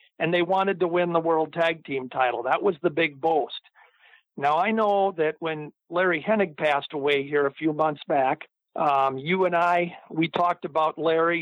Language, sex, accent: English, male, American